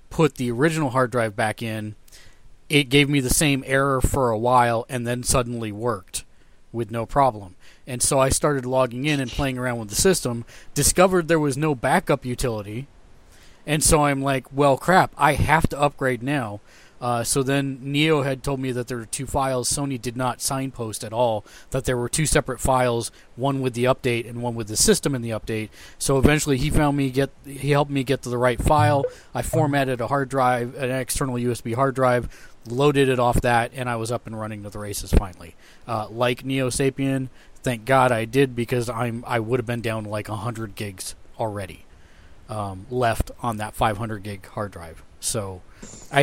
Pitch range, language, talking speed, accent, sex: 110-140 Hz, English, 200 wpm, American, male